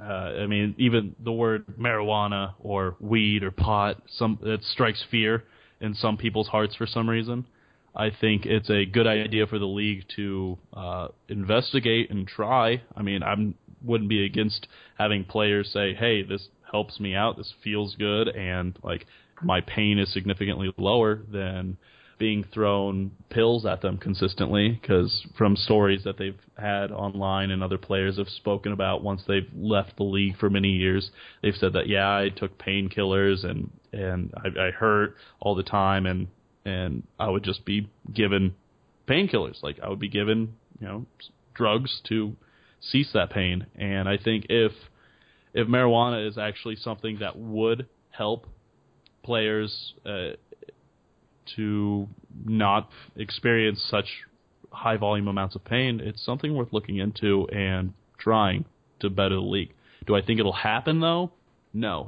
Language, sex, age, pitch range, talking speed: English, male, 20-39, 100-110 Hz, 160 wpm